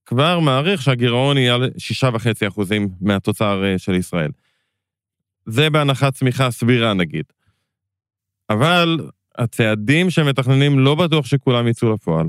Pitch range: 105-135 Hz